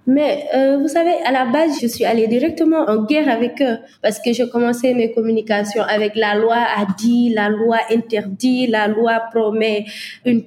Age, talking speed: 20-39, 190 wpm